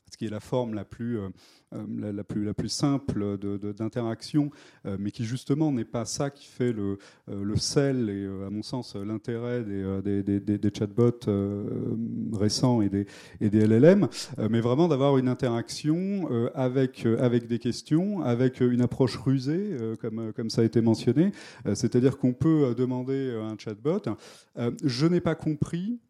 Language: French